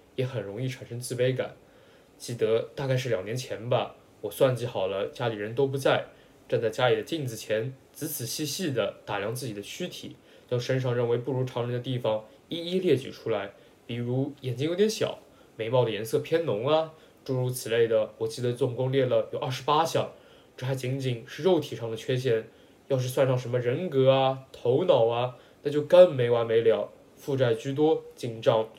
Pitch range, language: 125-170 Hz, English